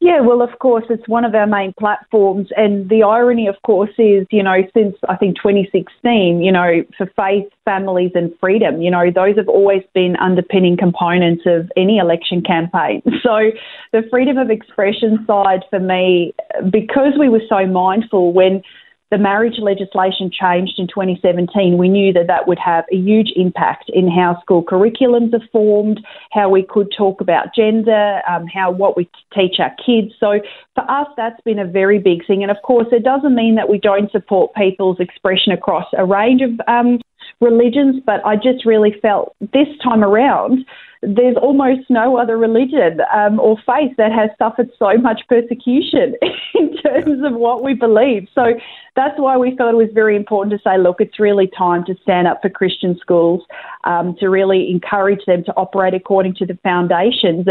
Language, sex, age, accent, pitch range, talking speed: English, female, 30-49, Australian, 190-230 Hz, 185 wpm